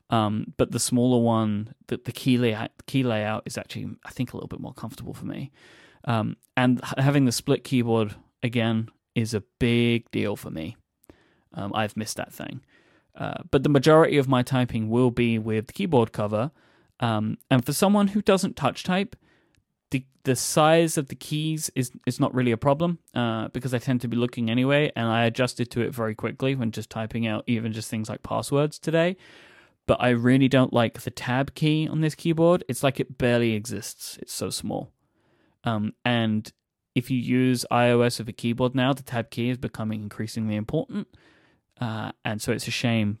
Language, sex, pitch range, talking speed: English, male, 110-135 Hz, 195 wpm